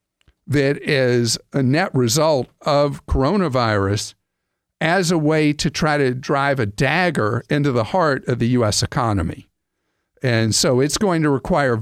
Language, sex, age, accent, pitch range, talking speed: English, male, 50-69, American, 115-155 Hz, 145 wpm